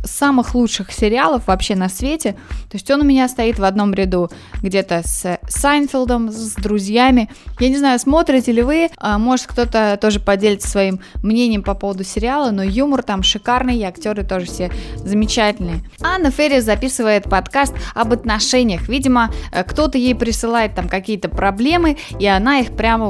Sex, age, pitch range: female, 20-39, 200-255 Hz